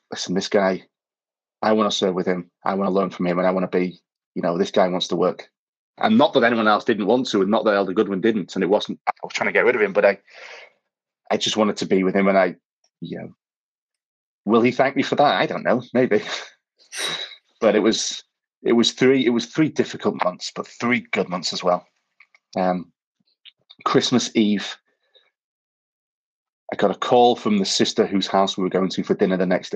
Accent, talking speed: British, 225 wpm